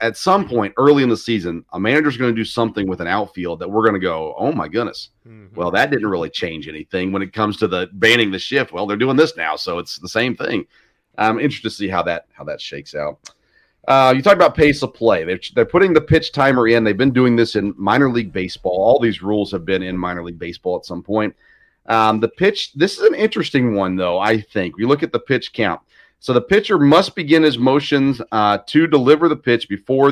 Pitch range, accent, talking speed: 100-140 Hz, American, 245 wpm